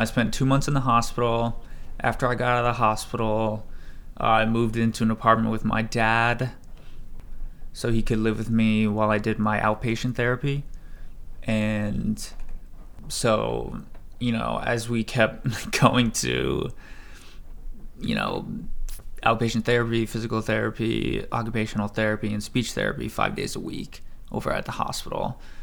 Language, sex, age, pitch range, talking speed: English, male, 20-39, 100-125 Hz, 150 wpm